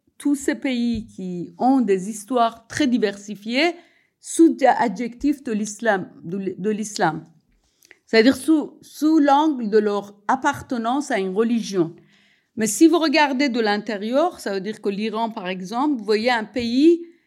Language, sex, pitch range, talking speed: French, female, 205-275 Hz, 145 wpm